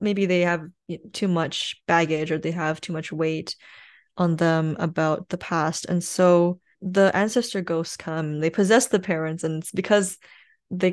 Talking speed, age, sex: 165 wpm, 10-29, female